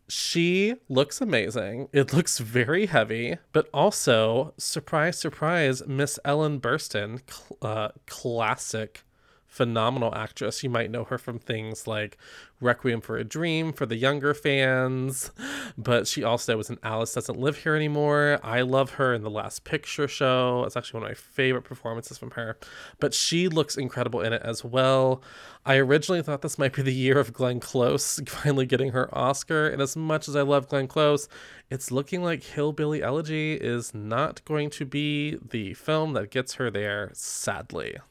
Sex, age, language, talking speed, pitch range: male, 20-39, English, 170 wpm, 120-150 Hz